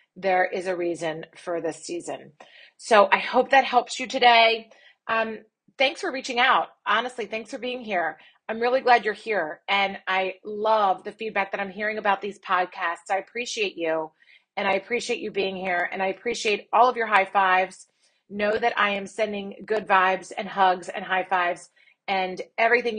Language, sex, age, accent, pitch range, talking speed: English, female, 30-49, American, 185-220 Hz, 185 wpm